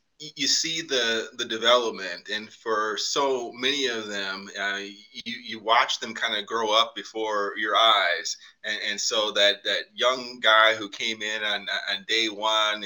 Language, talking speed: English, 175 wpm